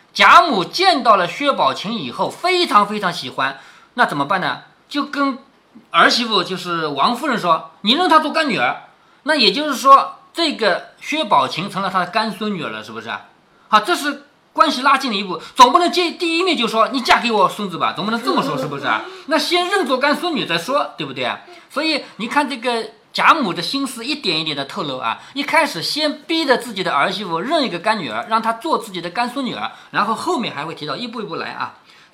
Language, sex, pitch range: Chinese, male, 205-315 Hz